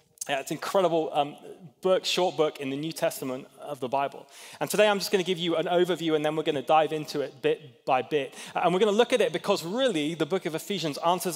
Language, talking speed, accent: English, 255 wpm, British